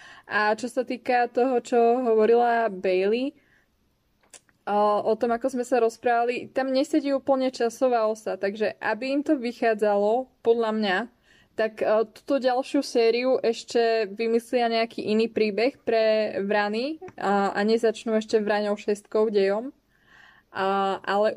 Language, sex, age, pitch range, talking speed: Slovak, female, 20-39, 210-240 Hz, 125 wpm